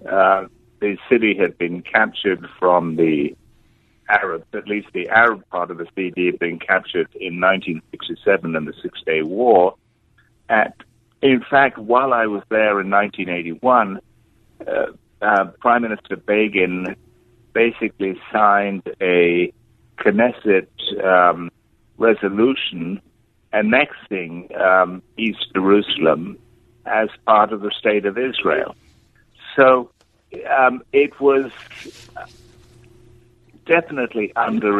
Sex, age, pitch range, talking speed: male, 60-79, 95-120 Hz, 110 wpm